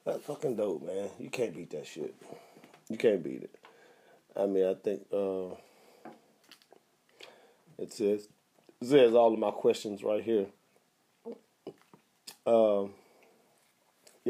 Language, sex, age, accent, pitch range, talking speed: English, male, 40-59, American, 100-170 Hz, 120 wpm